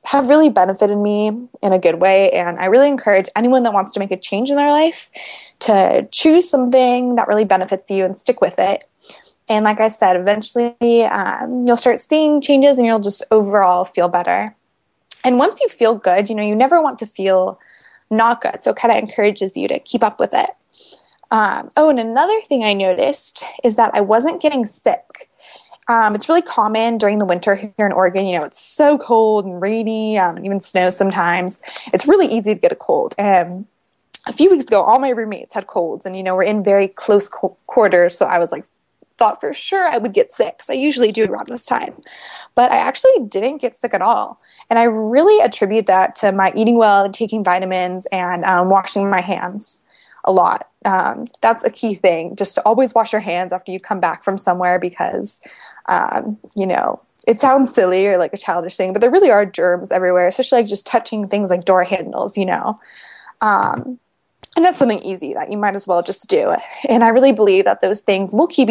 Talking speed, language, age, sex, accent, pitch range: 215 wpm, English, 20-39, female, American, 190-245 Hz